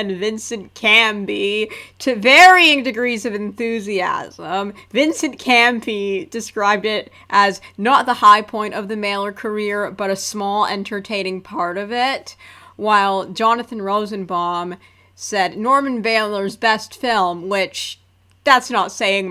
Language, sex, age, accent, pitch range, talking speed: English, female, 30-49, American, 190-220 Hz, 125 wpm